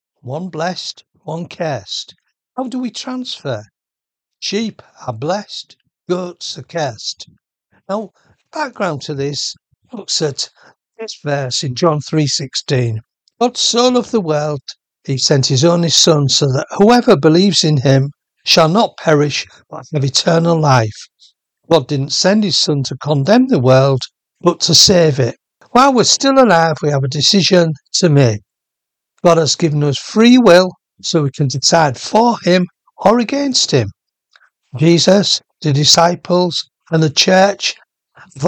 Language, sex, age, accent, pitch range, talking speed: English, male, 60-79, British, 145-195 Hz, 145 wpm